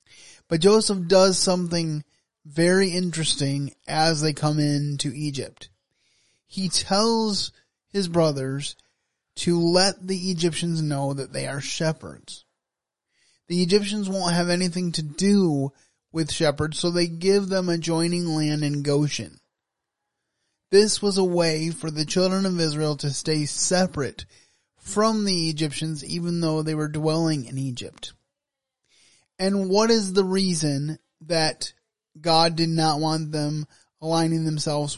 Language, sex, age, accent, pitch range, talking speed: English, male, 20-39, American, 150-180 Hz, 130 wpm